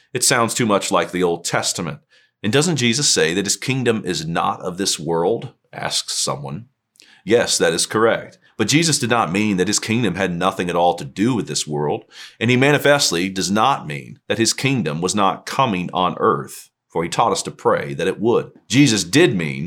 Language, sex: English, male